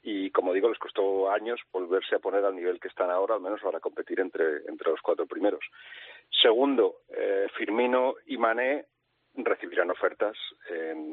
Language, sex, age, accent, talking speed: Spanish, male, 40-59, Spanish, 165 wpm